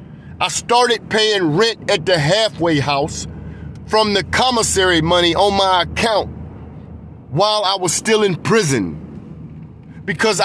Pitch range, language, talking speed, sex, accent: 180-220 Hz, English, 125 wpm, male, American